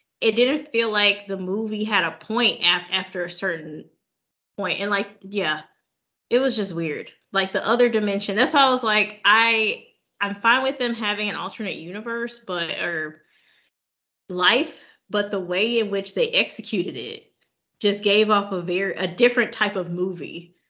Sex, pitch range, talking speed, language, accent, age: female, 180-230 Hz, 175 wpm, English, American, 20-39